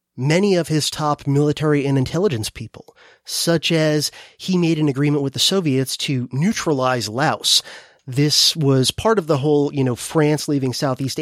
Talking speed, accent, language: 165 wpm, American, English